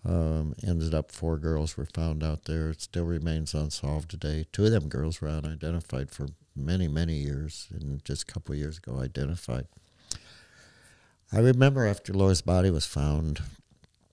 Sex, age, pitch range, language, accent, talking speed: male, 60-79, 80-95 Hz, English, American, 165 wpm